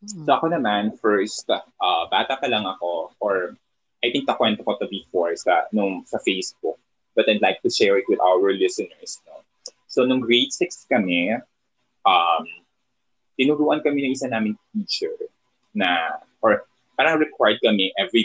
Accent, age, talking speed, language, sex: native, 20-39, 170 wpm, Filipino, male